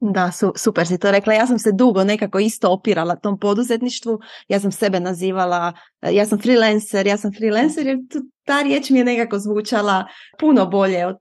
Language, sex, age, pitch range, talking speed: Croatian, female, 30-49, 180-220 Hz, 195 wpm